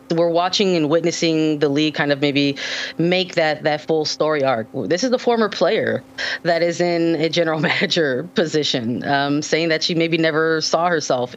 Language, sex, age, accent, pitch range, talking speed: English, female, 20-39, American, 145-170 Hz, 185 wpm